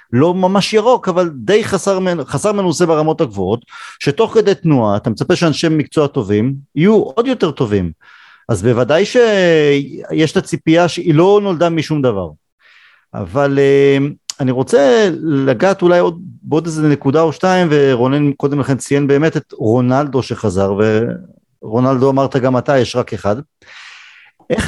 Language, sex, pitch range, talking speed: Hebrew, male, 130-185 Hz, 145 wpm